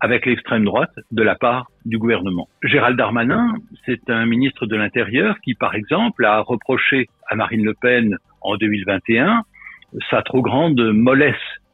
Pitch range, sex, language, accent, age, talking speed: 115-140 Hz, male, French, French, 60-79, 155 wpm